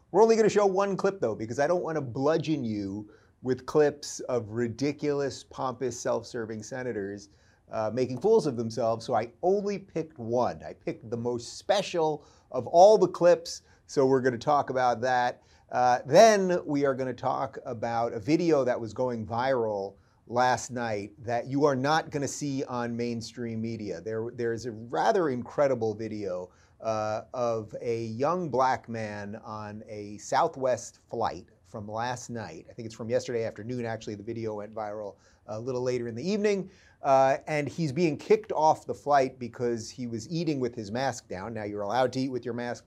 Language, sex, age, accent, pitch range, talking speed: English, male, 30-49, American, 110-135 Hz, 180 wpm